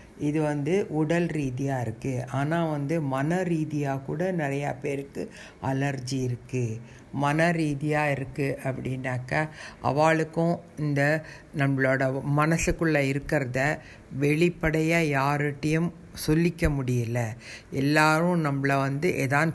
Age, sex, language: 60-79, female, Tamil